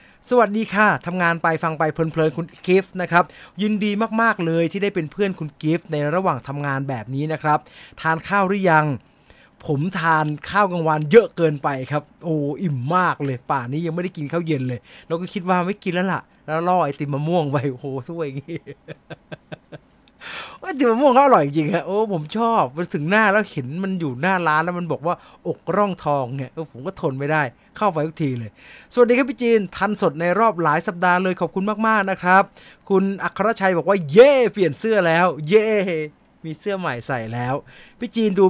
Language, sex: English, male